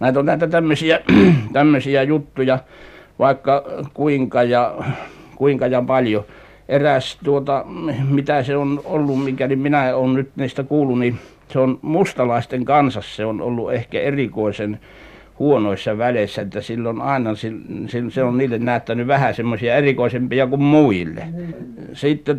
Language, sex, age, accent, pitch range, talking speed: Finnish, male, 60-79, native, 120-140 Hz, 135 wpm